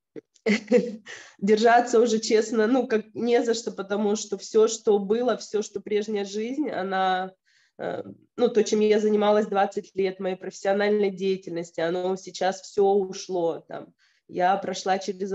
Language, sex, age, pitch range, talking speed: Russian, female, 20-39, 180-205 Hz, 145 wpm